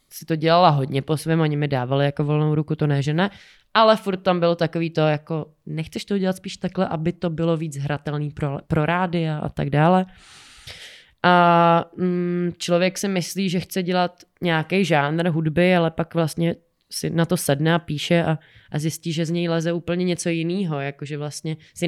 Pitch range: 150-170 Hz